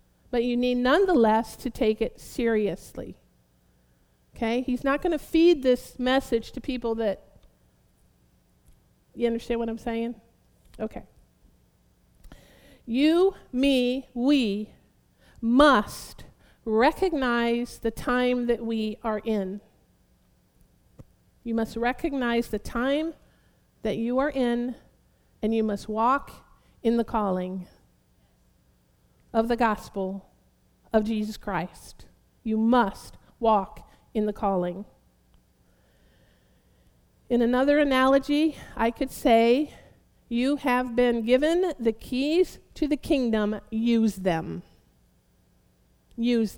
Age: 50-69